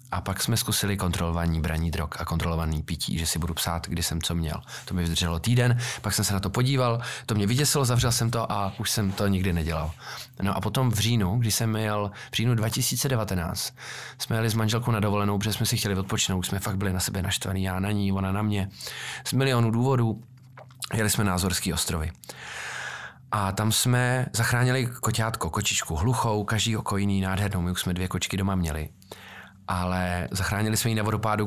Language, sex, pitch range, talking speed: Czech, male, 95-115 Hz, 200 wpm